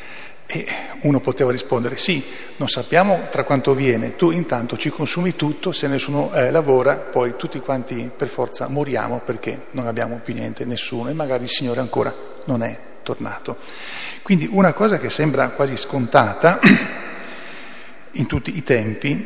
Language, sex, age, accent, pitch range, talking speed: Italian, male, 40-59, native, 125-150 Hz, 155 wpm